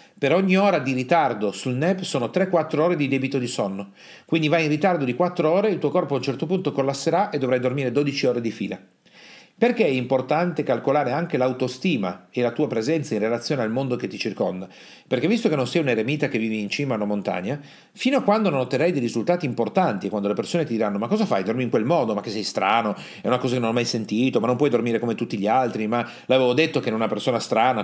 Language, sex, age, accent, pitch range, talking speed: Italian, male, 40-59, native, 115-165 Hz, 250 wpm